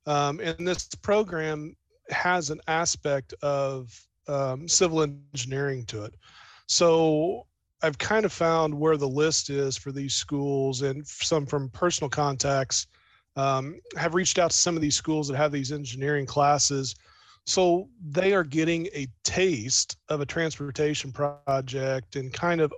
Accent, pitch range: American, 135-165 Hz